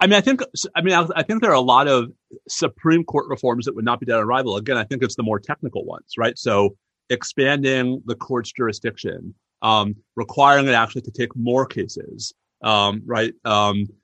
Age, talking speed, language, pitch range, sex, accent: 30-49, 210 wpm, English, 115-150 Hz, male, American